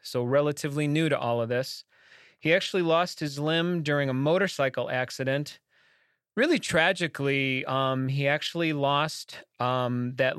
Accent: American